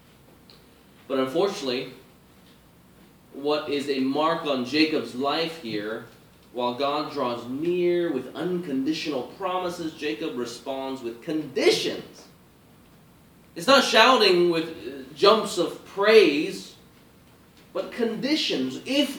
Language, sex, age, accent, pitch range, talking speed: English, male, 30-49, American, 130-205 Hz, 95 wpm